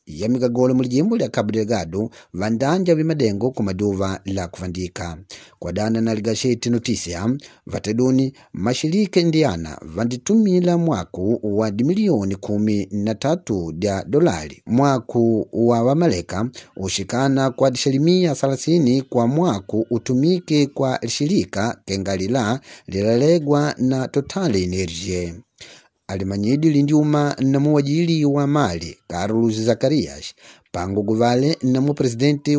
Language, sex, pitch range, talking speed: English, male, 105-145 Hz, 100 wpm